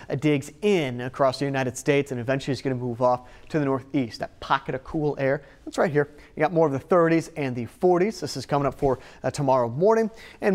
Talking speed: 240 wpm